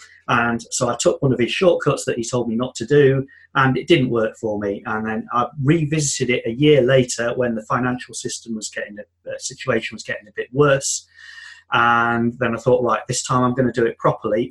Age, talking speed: 30-49, 230 wpm